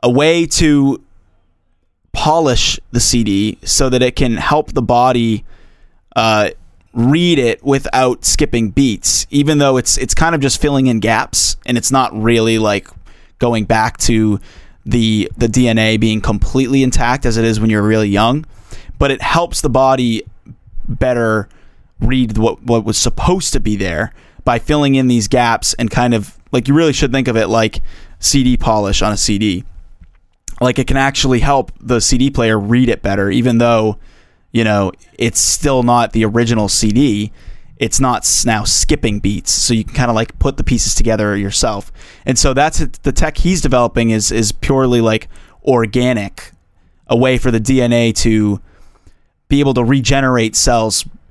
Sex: male